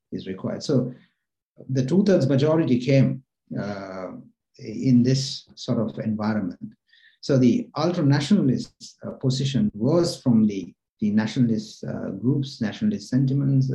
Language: English